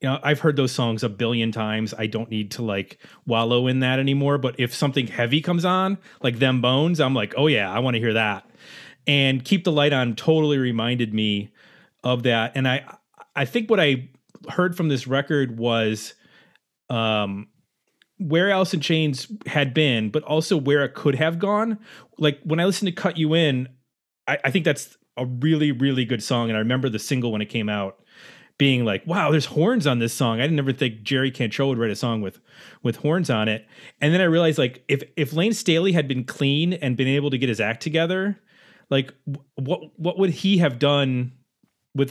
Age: 30-49